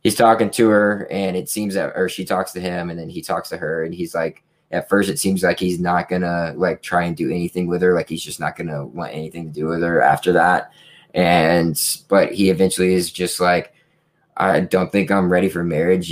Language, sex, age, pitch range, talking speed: English, male, 20-39, 85-95 Hz, 240 wpm